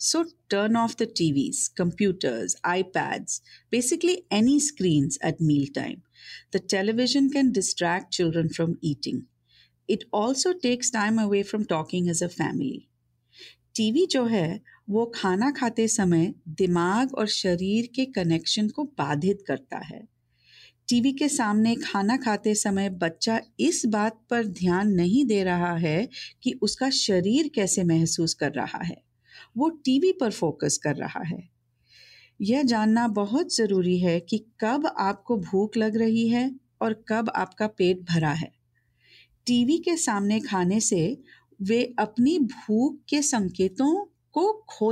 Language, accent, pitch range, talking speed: Hindi, native, 175-245 Hz, 140 wpm